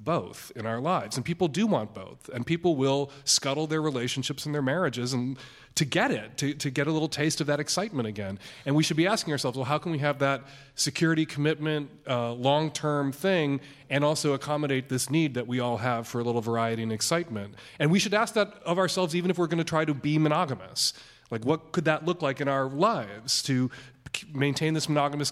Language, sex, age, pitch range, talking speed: English, male, 30-49, 125-160 Hz, 220 wpm